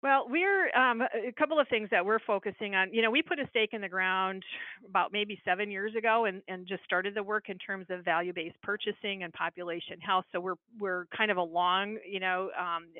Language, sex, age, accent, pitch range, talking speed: English, female, 50-69, American, 180-210 Hz, 220 wpm